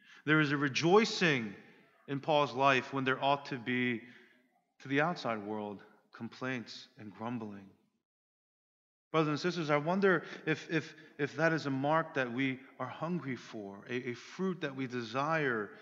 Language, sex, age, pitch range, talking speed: English, male, 30-49, 115-145 Hz, 160 wpm